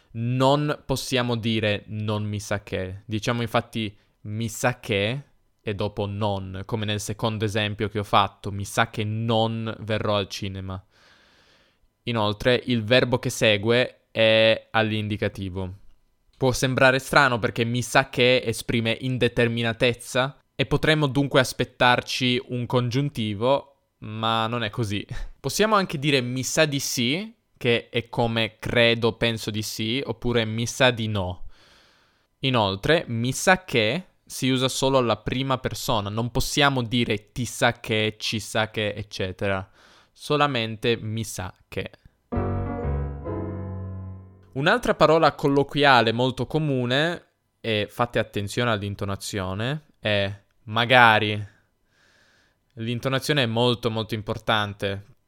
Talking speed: 125 wpm